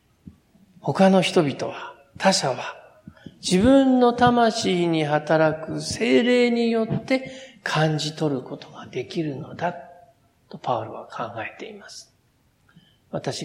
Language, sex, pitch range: Japanese, male, 140-185 Hz